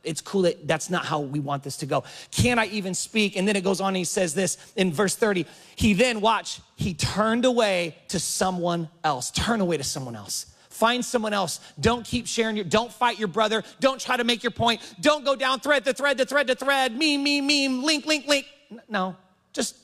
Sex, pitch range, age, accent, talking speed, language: male, 165-220 Hz, 30-49, American, 230 wpm, English